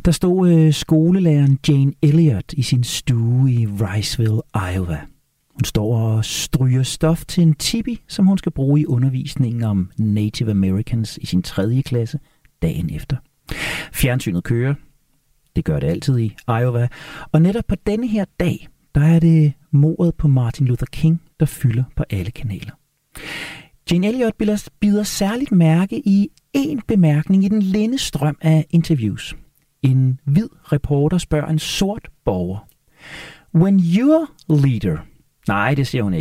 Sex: male